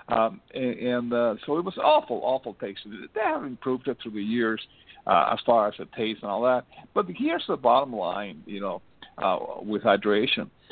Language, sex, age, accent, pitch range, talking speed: English, male, 50-69, American, 110-140 Hz, 200 wpm